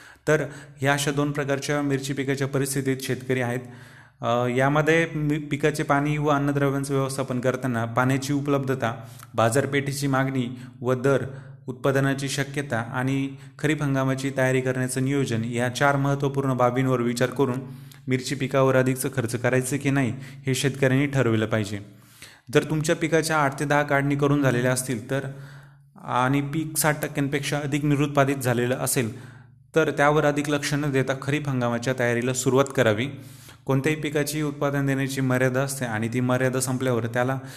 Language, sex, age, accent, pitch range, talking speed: Marathi, male, 30-49, native, 130-145 Hz, 140 wpm